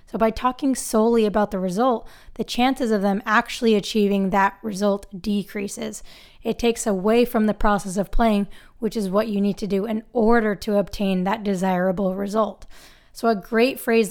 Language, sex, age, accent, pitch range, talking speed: English, female, 20-39, American, 200-230 Hz, 180 wpm